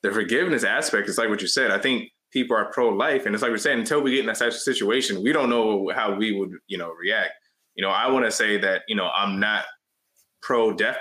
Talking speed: 240 wpm